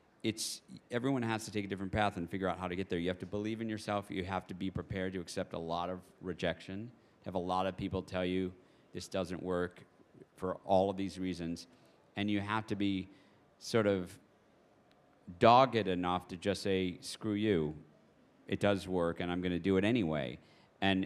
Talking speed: 200 wpm